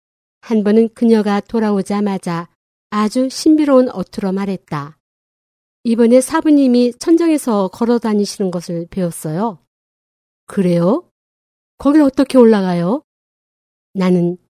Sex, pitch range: female, 185-245 Hz